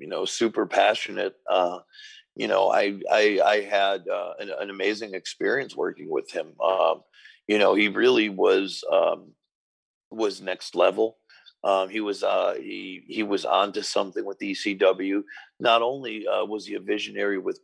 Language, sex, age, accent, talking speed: English, male, 50-69, American, 165 wpm